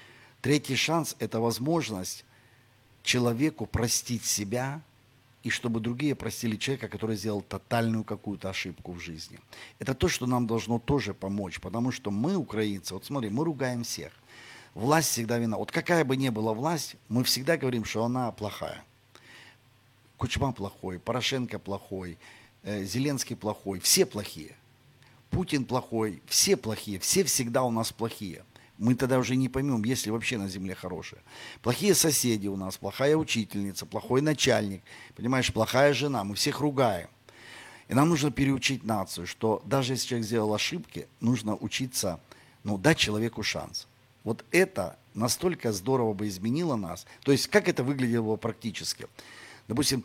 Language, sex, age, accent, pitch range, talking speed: Ukrainian, male, 50-69, native, 105-135 Hz, 150 wpm